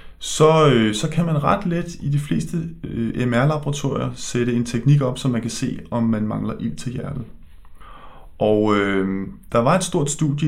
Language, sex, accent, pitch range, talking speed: Danish, male, native, 105-140 Hz, 190 wpm